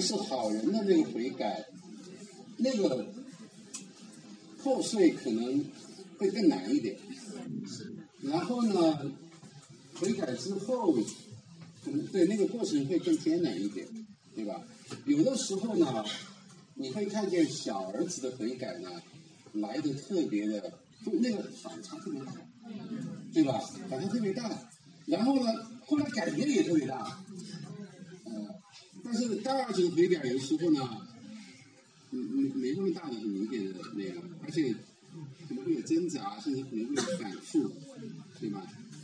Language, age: Chinese, 60-79